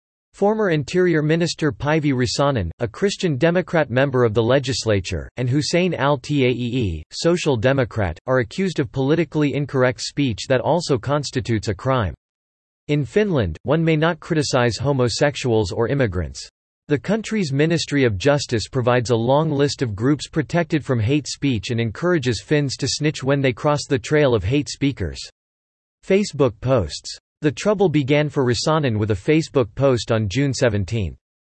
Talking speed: 150 wpm